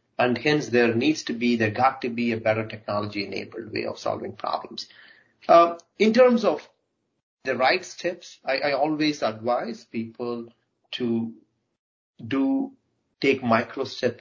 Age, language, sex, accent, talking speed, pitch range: 30-49, English, male, Indian, 150 wpm, 110-130 Hz